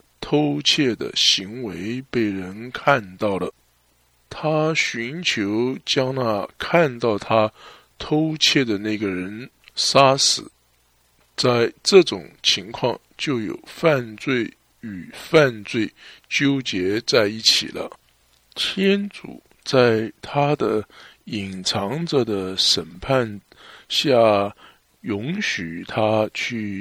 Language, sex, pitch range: English, male, 100-135 Hz